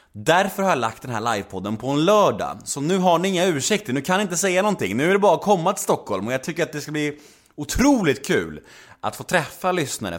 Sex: male